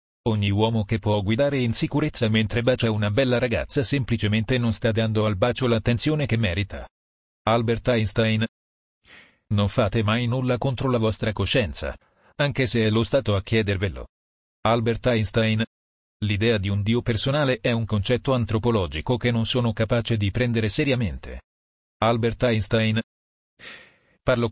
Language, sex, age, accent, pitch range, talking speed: Italian, male, 40-59, native, 105-125 Hz, 145 wpm